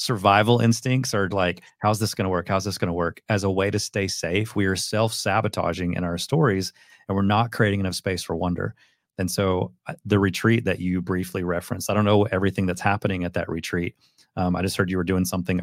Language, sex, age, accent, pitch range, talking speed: English, male, 30-49, American, 90-110 Hz, 225 wpm